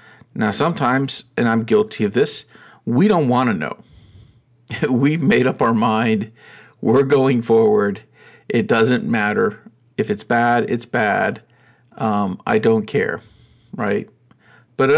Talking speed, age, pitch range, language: 140 wpm, 50-69, 110-130 Hz, English